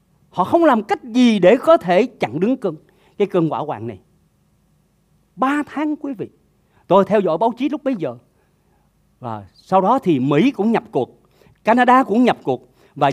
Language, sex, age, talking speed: Vietnamese, male, 40-59, 185 wpm